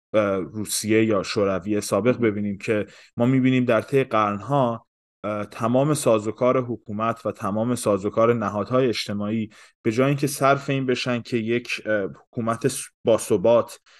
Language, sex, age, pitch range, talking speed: Persian, male, 20-39, 105-125 Hz, 130 wpm